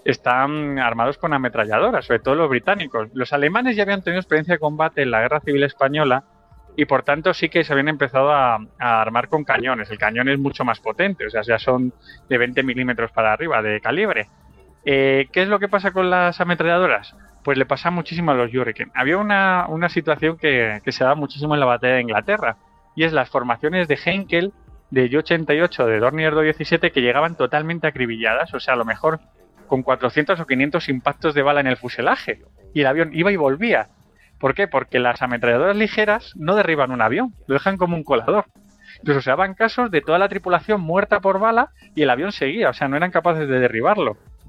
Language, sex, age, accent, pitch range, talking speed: Spanish, male, 20-39, Spanish, 125-170 Hz, 215 wpm